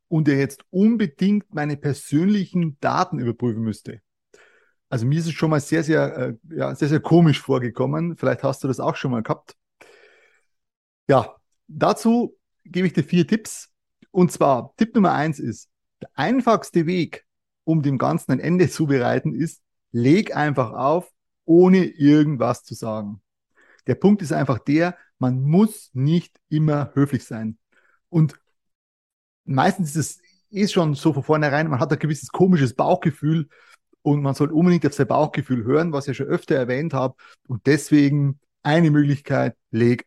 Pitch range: 135-180 Hz